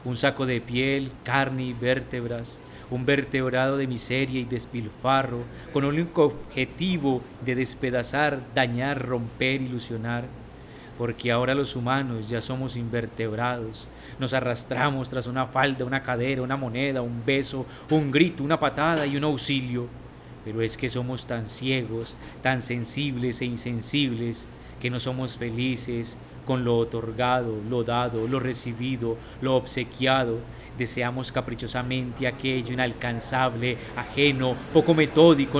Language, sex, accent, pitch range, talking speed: Spanish, male, Colombian, 120-135 Hz, 130 wpm